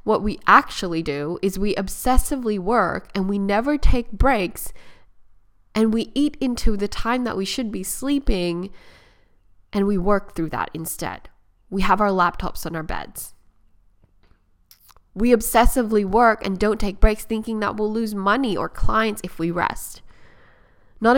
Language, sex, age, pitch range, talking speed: English, female, 10-29, 175-225 Hz, 155 wpm